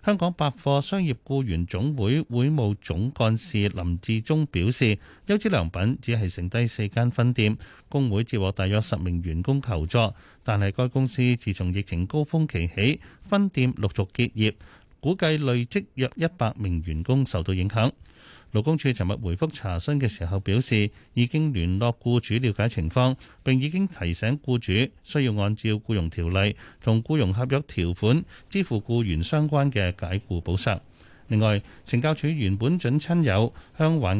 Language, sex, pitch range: Chinese, male, 100-135 Hz